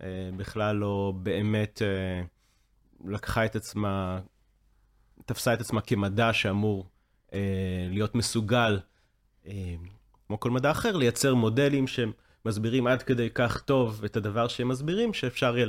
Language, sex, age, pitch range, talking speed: Hebrew, male, 30-49, 100-120 Hz, 130 wpm